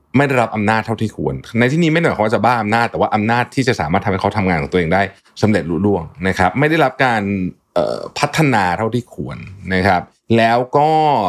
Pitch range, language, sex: 95-130 Hz, Thai, male